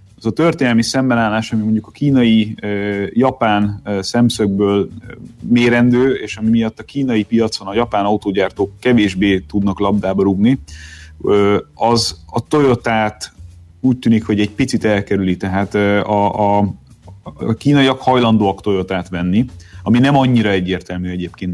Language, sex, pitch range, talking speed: Hungarian, male, 100-120 Hz, 130 wpm